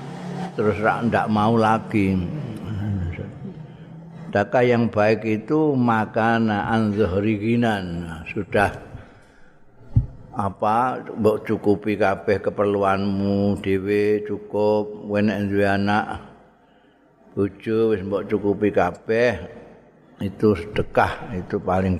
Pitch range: 95-110 Hz